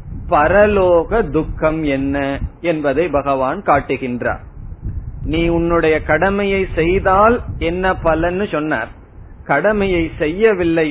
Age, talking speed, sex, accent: 30-49, 85 wpm, male, native